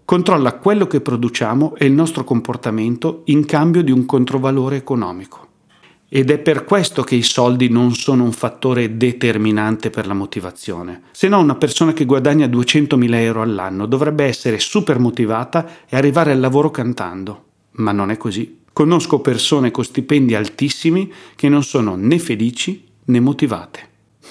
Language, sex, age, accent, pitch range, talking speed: Italian, male, 40-59, native, 110-150 Hz, 155 wpm